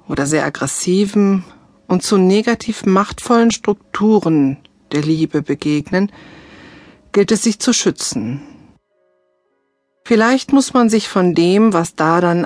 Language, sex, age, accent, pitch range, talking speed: German, female, 50-69, German, 160-220 Hz, 120 wpm